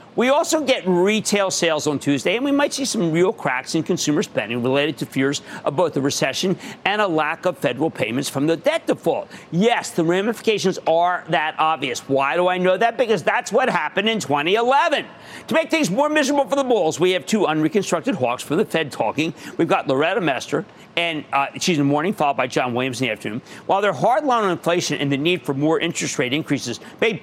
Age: 50-69